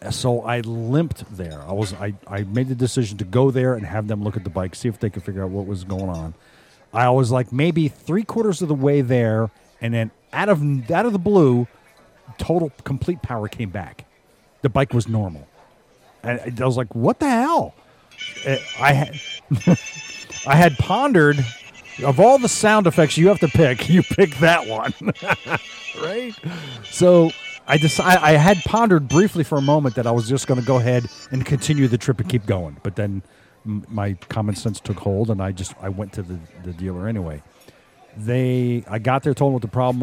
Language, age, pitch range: English, 40-59, 110-150 Hz